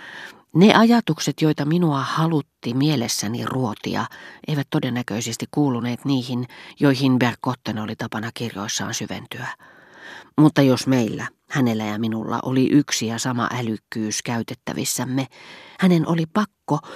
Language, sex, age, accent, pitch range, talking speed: Finnish, female, 40-59, native, 120-155 Hz, 115 wpm